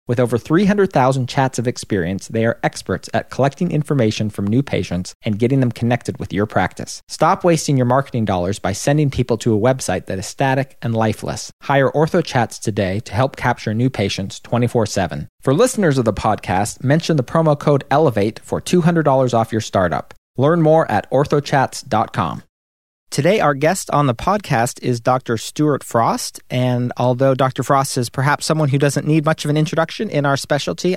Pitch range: 120-155 Hz